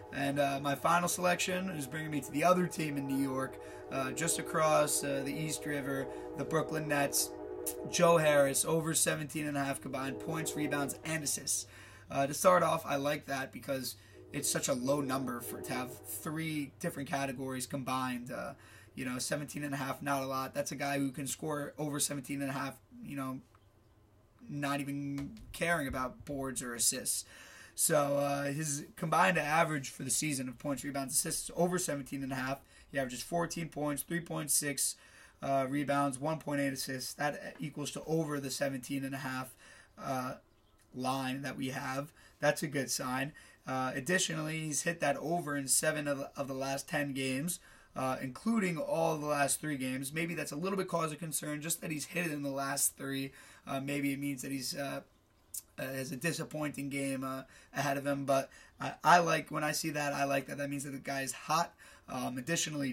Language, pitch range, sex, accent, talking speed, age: English, 135-155 Hz, male, American, 190 wpm, 20-39